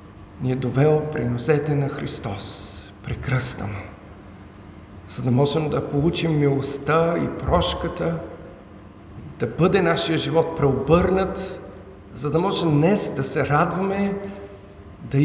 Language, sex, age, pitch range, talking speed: Bulgarian, male, 50-69, 100-160 Hz, 110 wpm